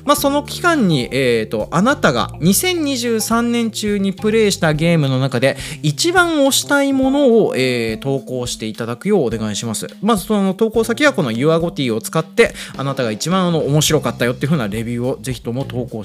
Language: Japanese